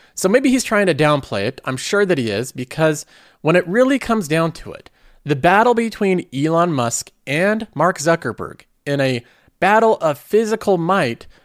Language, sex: English, male